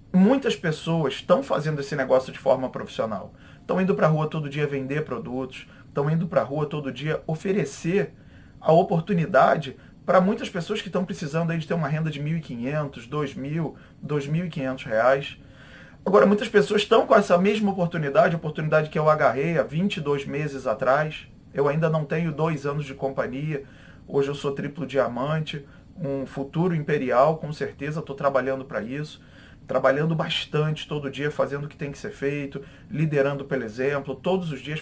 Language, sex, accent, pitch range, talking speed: Portuguese, male, Brazilian, 140-165 Hz, 170 wpm